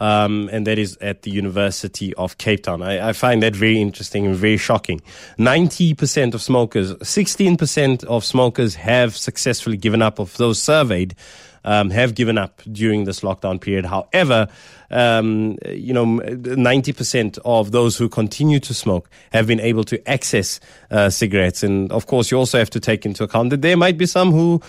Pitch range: 100-130 Hz